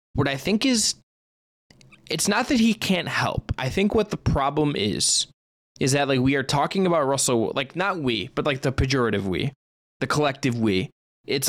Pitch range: 115-150 Hz